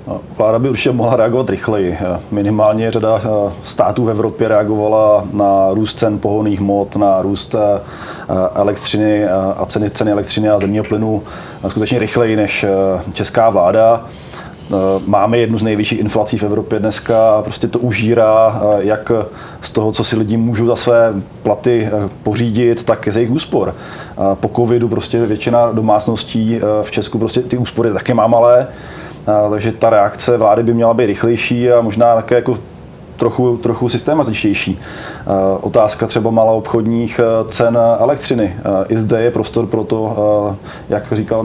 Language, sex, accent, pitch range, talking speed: Czech, male, native, 105-115 Hz, 150 wpm